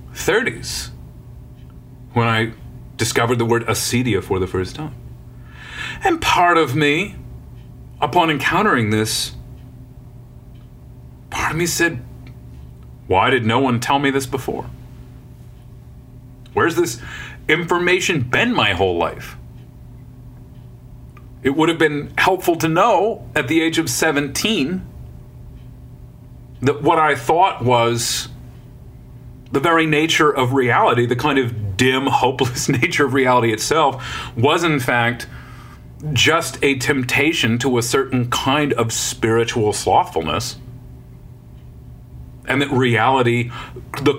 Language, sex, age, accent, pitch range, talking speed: English, male, 40-59, American, 115-145 Hz, 115 wpm